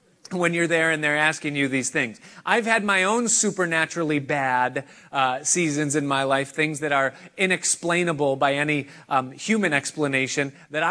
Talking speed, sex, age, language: 165 wpm, male, 30-49, English